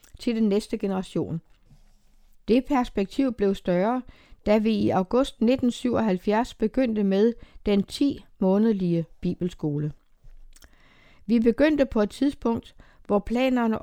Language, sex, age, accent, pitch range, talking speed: Danish, female, 60-79, native, 195-245 Hz, 110 wpm